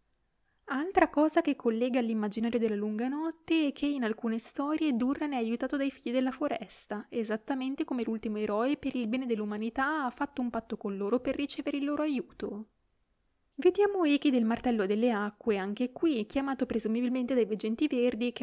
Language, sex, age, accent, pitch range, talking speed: Italian, female, 20-39, native, 220-280 Hz, 175 wpm